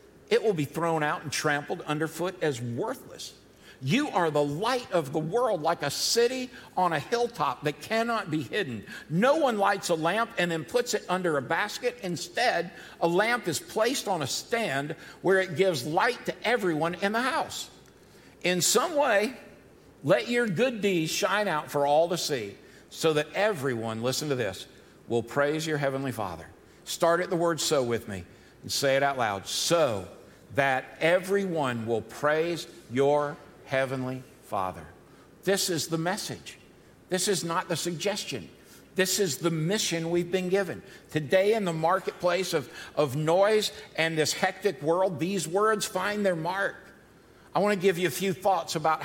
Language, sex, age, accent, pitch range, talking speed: English, male, 60-79, American, 150-205 Hz, 175 wpm